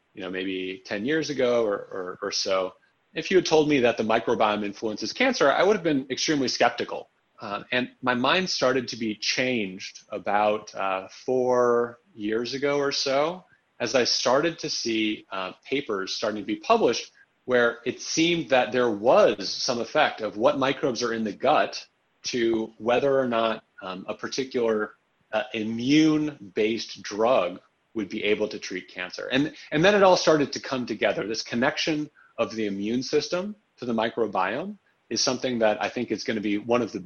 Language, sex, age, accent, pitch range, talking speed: English, male, 30-49, American, 105-140 Hz, 180 wpm